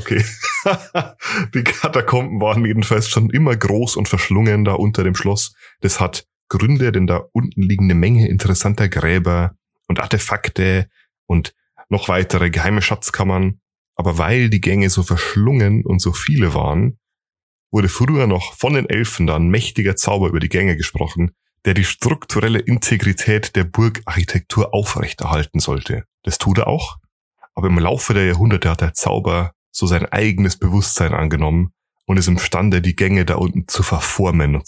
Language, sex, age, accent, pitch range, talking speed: German, male, 30-49, German, 90-105 Hz, 155 wpm